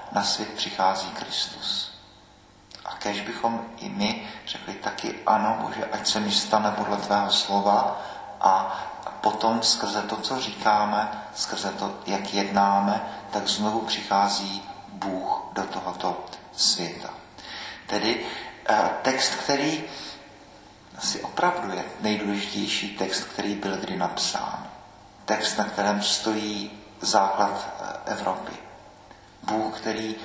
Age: 40-59